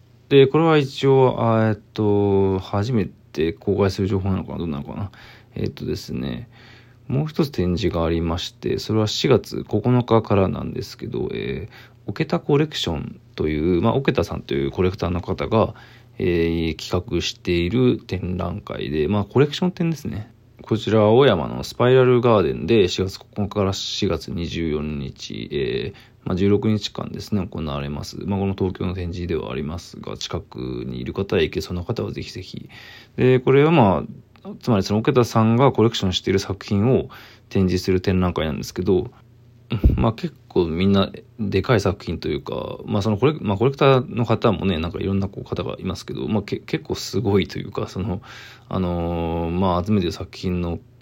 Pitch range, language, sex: 90-120 Hz, Japanese, male